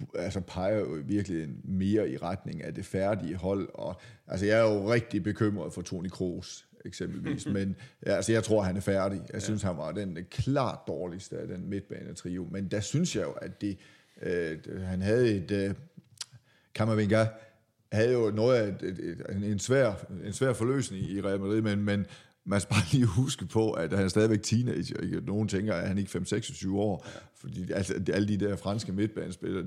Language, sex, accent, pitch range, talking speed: Danish, male, native, 95-110 Hz, 190 wpm